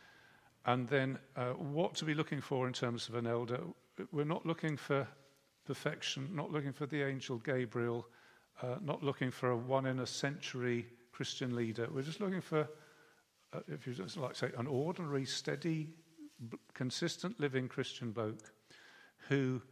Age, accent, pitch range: 50-69, British, 125-150 Hz